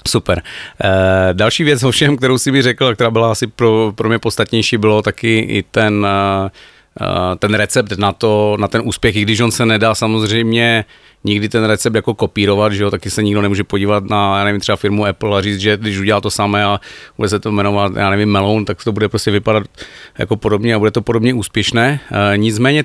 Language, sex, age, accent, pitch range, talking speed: Czech, male, 40-59, native, 100-115 Hz, 220 wpm